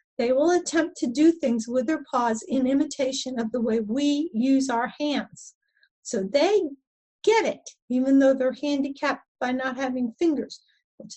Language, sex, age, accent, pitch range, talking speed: English, female, 40-59, American, 230-300 Hz, 165 wpm